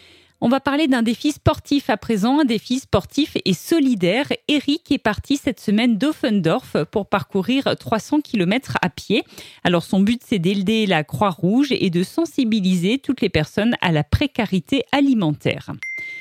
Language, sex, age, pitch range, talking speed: French, female, 40-59, 200-280 Hz, 155 wpm